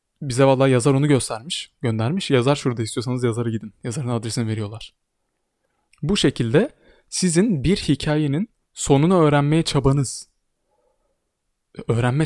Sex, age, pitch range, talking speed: male, 20-39, 115-150 Hz, 115 wpm